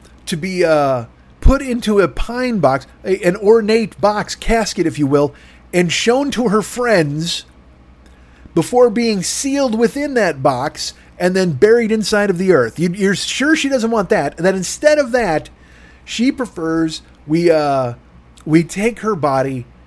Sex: male